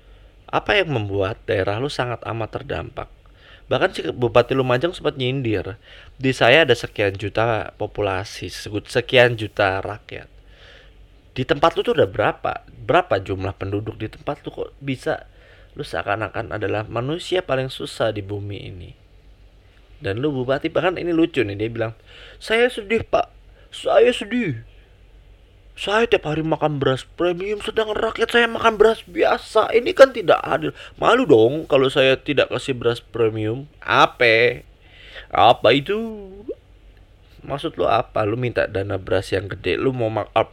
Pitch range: 100-145 Hz